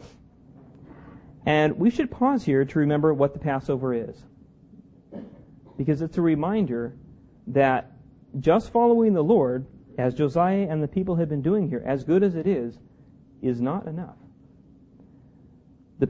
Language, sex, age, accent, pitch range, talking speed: English, male, 40-59, American, 130-170 Hz, 140 wpm